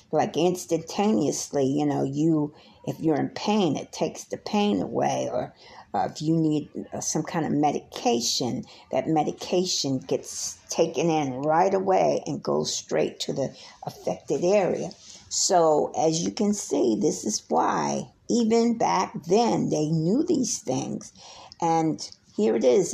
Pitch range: 150-200 Hz